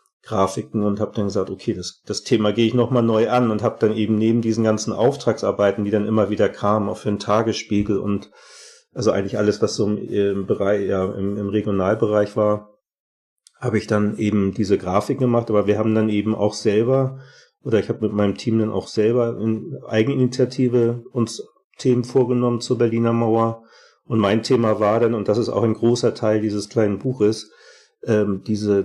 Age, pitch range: 40-59, 100-115 Hz